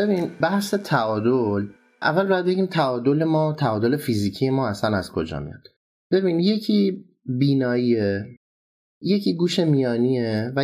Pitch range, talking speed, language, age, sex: 105-140 Hz, 125 wpm, Persian, 30-49, male